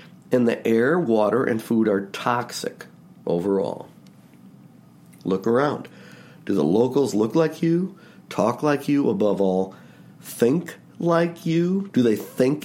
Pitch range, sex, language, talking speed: 105-145 Hz, male, English, 135 wpm